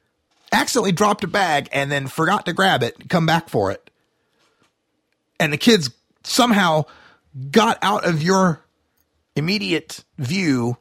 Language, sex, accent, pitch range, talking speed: English, male, American, 135-190 Hz, 135 wpm